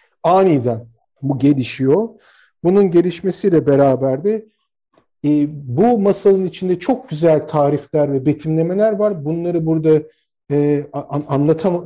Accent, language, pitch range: native, Turkish, 150-205 Hz